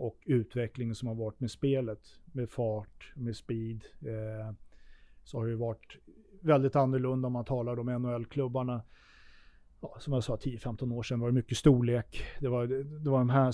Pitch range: 115-135 Hz